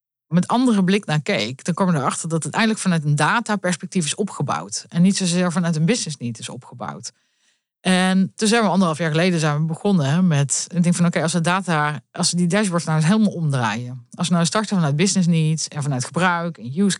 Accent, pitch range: Dutch, 155-195 Hz